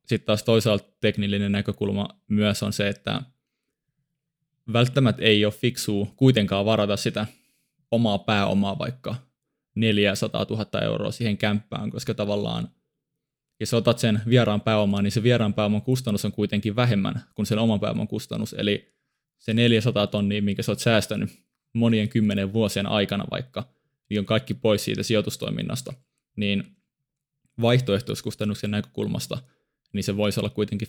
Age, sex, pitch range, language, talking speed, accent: 20-39, male, 100-115 Hz, Finnish, 140 wpm, native